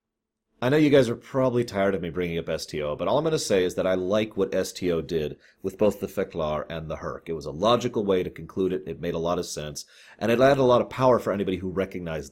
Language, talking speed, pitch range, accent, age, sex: English, 280 wpm, 90-120 Hz, American, 30-49, male